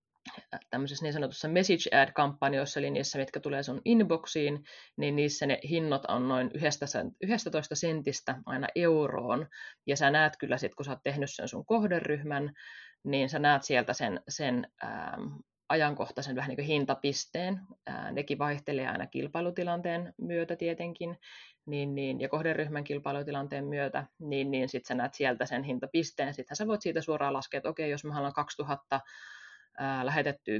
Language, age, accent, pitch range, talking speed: Finnish, 30-49, native, 135-155 Hz, 140 wpm